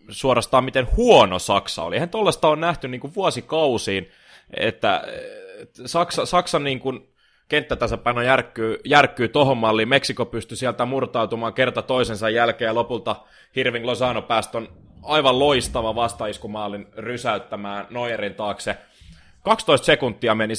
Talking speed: 120 wpm